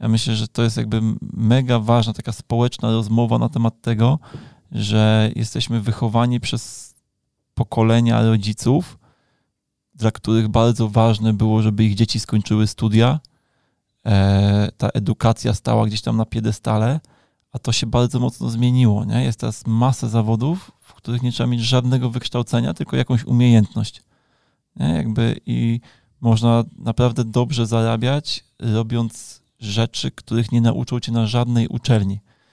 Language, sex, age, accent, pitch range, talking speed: Polish, male, 20-39, native, 110-125 Hz, 135 wpm